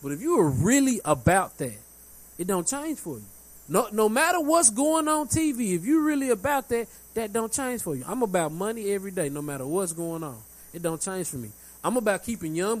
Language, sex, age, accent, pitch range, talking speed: English, male, 20-39, American, 150-225 Hz, 225 wpm